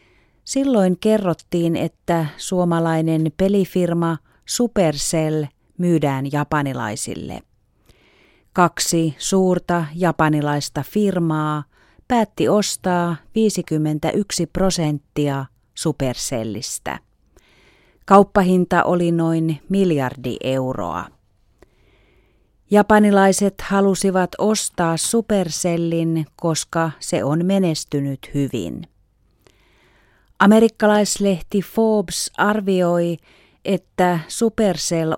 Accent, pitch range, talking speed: native, 150-190 Hz, 60 wpm